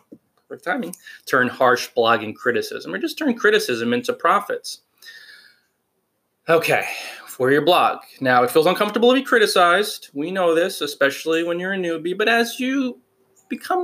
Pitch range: 140-225 Hz